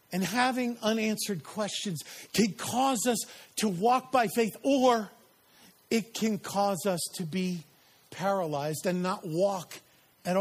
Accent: American